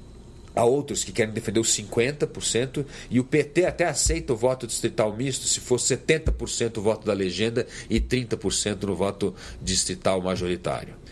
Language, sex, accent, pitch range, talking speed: Spanish, male, Brazilian, 105-130 Hz, 155 wpm